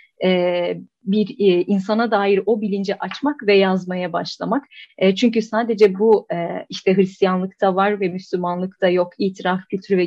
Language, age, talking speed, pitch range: Turkish, 30-49, 150 wpm, 185-225 Hz